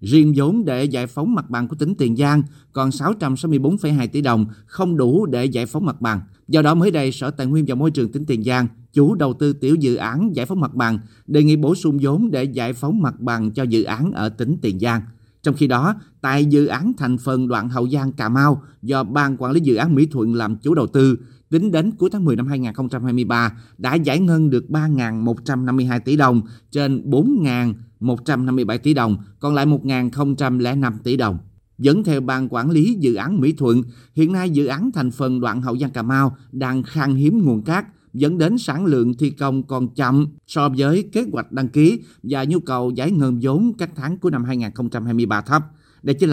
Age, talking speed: 30-49, 215 wpm